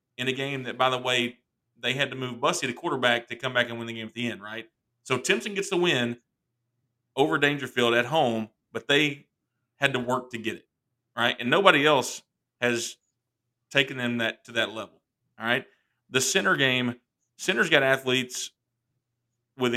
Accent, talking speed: American, 190 wpm